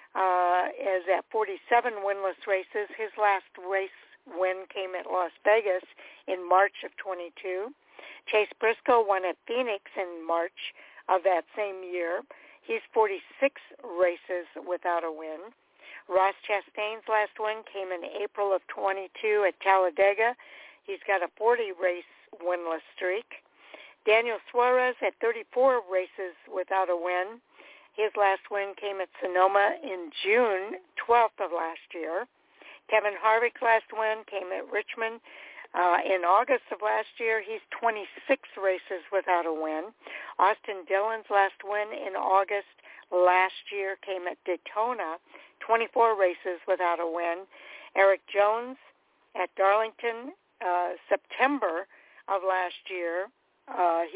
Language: English